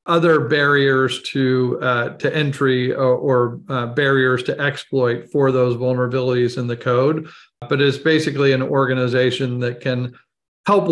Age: 40-59